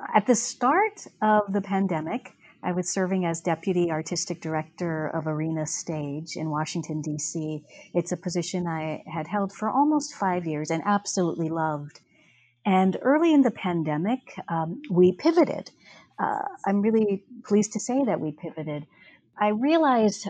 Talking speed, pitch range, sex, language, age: 150 wpm, 160-195 Hz, female, English, 40-59